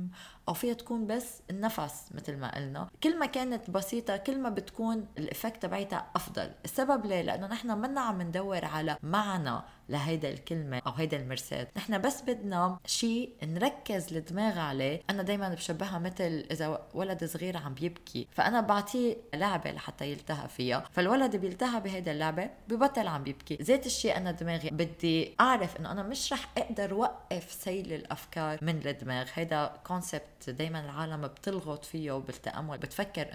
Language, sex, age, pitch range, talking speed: Arabic, female, 20-39, 155-200 Hz, 155 wpm